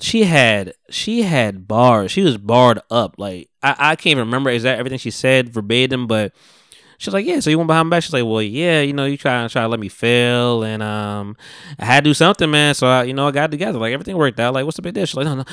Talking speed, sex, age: 280 wpm, male, 20-39